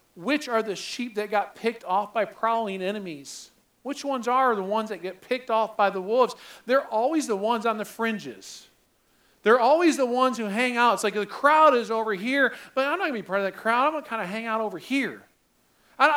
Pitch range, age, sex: 205-280 Hz, 40-59, male